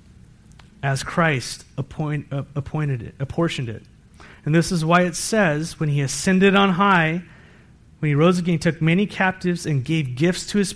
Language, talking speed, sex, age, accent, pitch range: English, 180 wpm, male, 30-49, American, 140-175 Hz